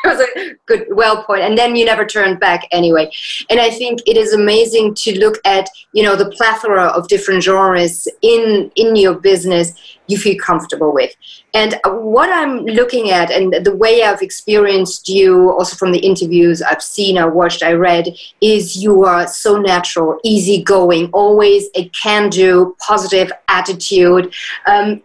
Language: English